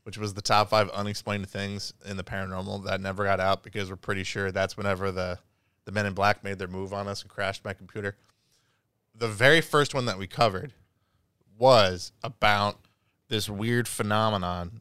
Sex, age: male, 20-39